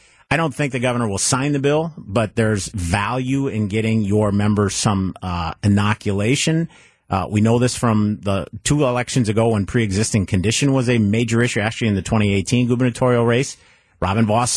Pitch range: 95-125 Hz